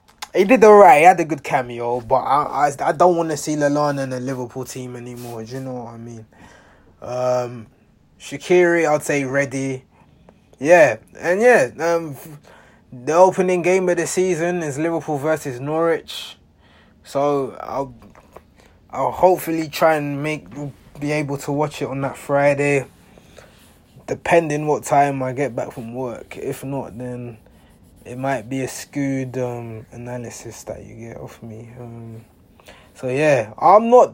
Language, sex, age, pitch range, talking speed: English, male, 20-39, 120-150 Hz, 160 wpm